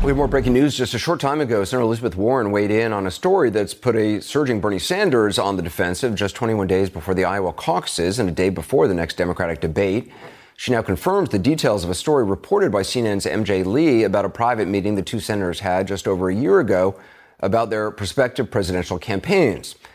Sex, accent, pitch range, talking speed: male, American, 95-115 Hz, 220 wpm